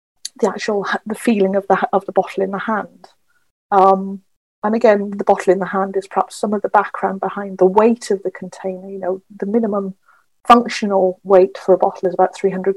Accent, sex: British, female